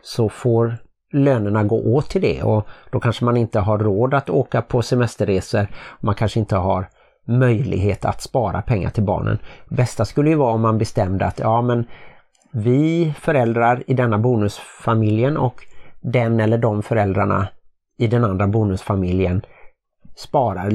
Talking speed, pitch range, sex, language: 155 wpm, 105-125 Hz, male, Swedish